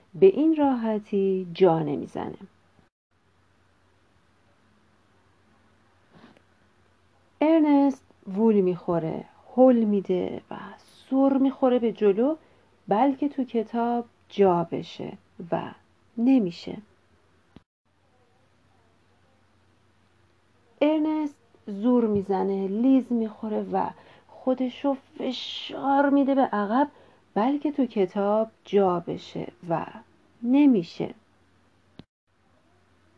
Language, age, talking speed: Persian, 40-59, 70 wpm